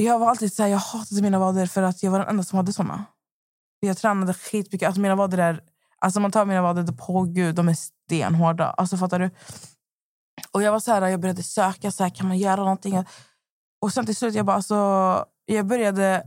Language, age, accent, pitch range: Swedish, 20-39, native, 185-215 Hz